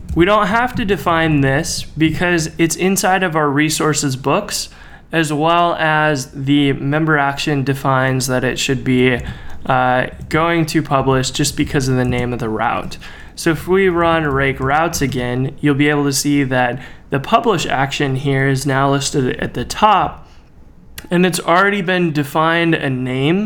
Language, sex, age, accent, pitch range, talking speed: English, male, 20-39, American, 140-165 Hz, 170 wpm